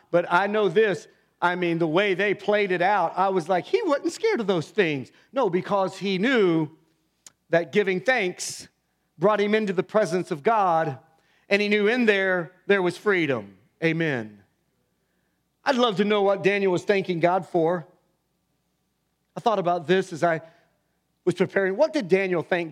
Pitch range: 175-245 Hz